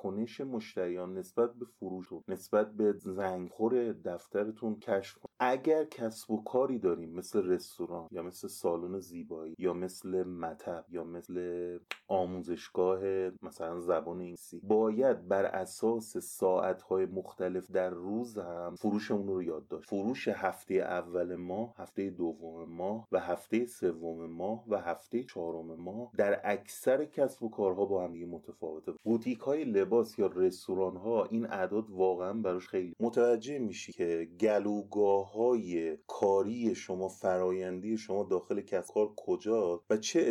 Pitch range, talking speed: 90-120 Hz, 140 wpm